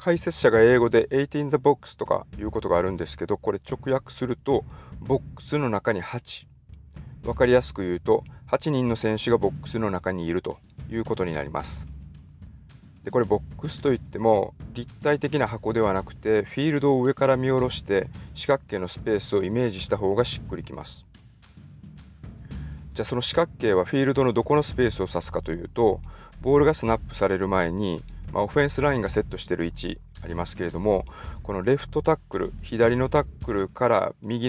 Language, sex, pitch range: Japanese, male, 90-130 Hz